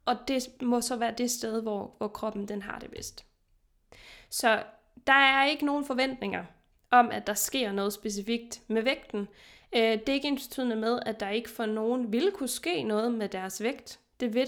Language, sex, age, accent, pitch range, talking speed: Danish, female, 20-39, native, 205-245 Hz, 195 wpm